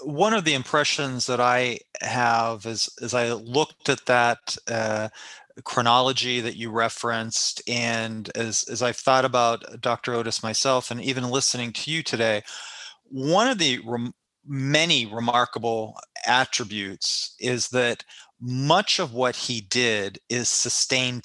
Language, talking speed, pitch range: English, 140 wpm, 115-135 Hz